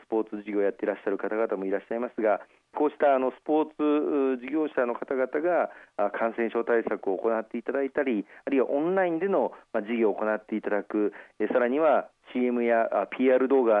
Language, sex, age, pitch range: Japanese, male, 40-59, 110-130 Hz